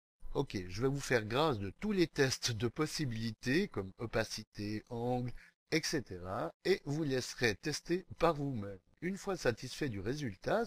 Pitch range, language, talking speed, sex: 100-170 Hz, French, 150 wpm, male